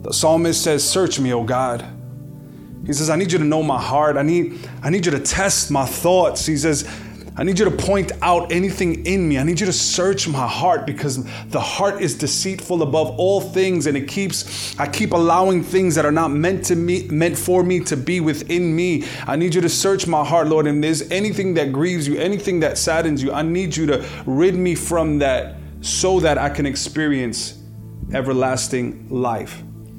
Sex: male